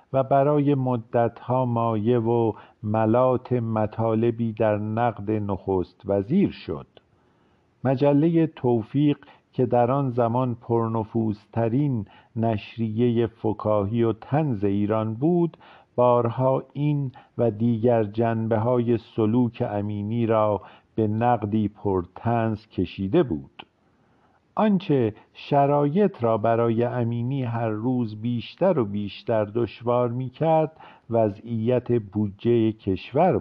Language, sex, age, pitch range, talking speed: Persian, male, 50-69, 110-130 Hz, 95 wpm